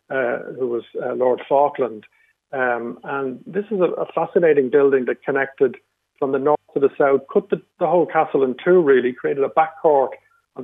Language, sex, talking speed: English, male, 195 wpm